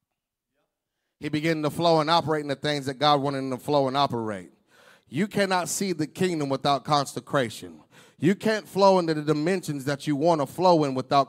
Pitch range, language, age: 140-170 Hz, English, 40-59